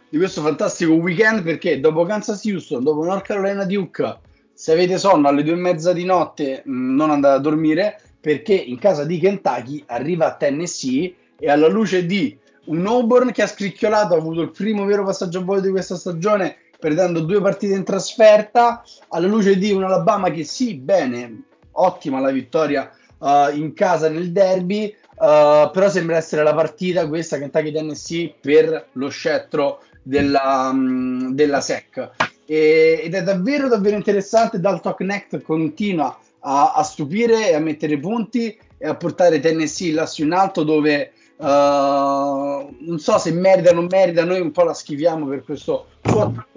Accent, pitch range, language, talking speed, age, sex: native, 155-205 Hz, Italian, 160 wpm, 30-49, male